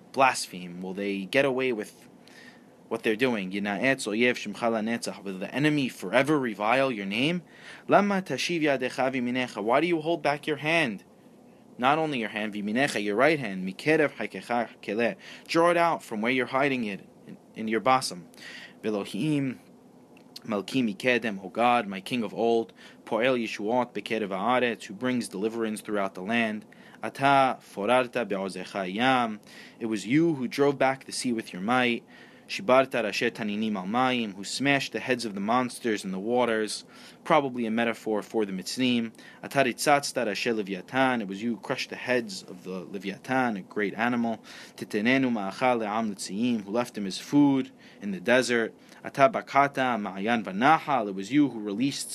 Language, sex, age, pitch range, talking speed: English, male, 20-39, 110-140 Hz, 125 wpm